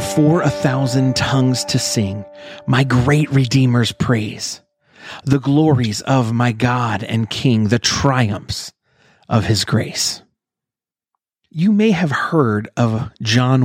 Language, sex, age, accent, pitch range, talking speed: English, male, 30-49, American, 115-145 Hz, 125 wpm